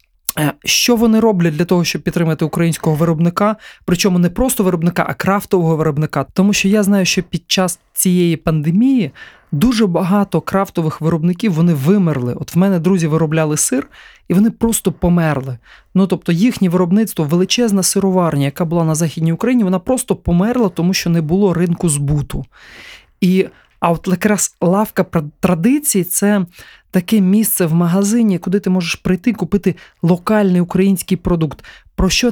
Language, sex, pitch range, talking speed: Ukrainian, male, 170-215 Hz, 155 wpm